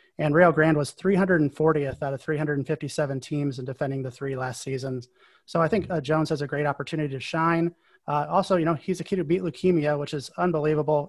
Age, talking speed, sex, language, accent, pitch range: 30-49, 210 wpm, male, English, American, 145-170 Hz